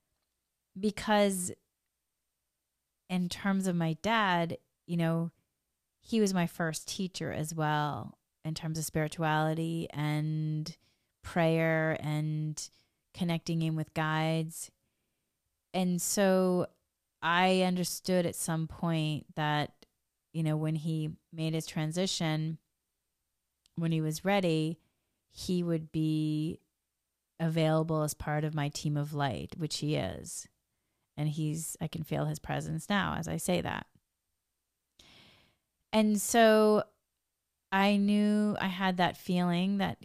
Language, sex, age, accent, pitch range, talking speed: English, female, 30-49, American, 155-185 Hz, 120 wpm